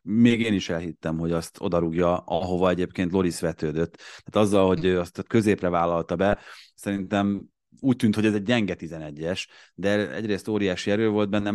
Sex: male